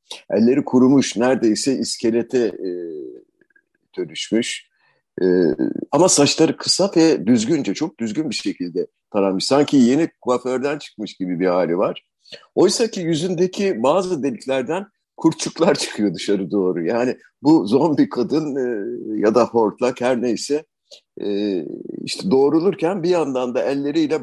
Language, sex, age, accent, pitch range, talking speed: Turkish, male, 50-69, native, 110-160 Hz, 125 wpm